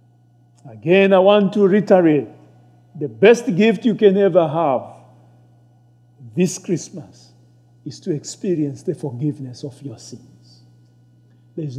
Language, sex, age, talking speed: English, male, 50-69, 115 wpm